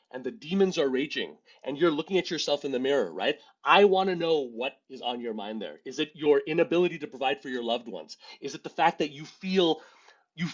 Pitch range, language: 120-180 Hz, English